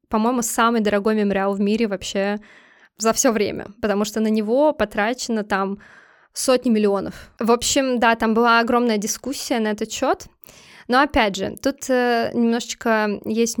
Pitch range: 215-260 Hz